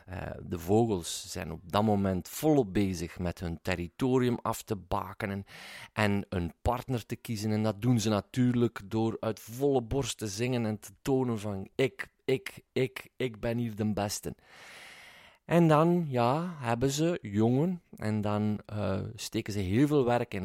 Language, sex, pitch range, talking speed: Dutch, male, 100-125 Hz, 165 wpm